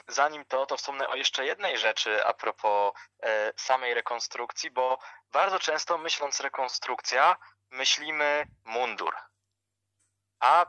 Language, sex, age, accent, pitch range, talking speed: Polish, male, 20-39, native, 115-145 Hz, 110 wpm